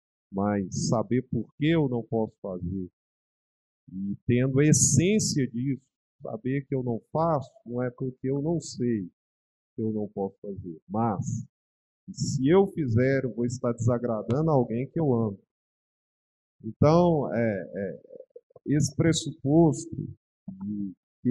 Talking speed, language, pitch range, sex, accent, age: 125 wpm, Portuguese, 110-150 Hz, male, Brazilian, 40-59